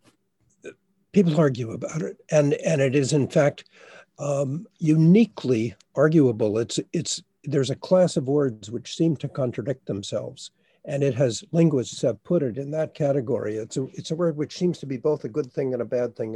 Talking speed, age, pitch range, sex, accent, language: 190 wpm, 60-79, 125-165 Hz, male, American, English